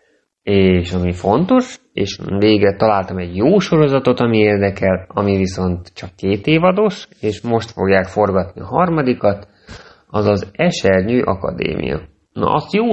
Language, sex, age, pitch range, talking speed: Hungarian, male, 30-49, 95-110 Hz, 135 wpm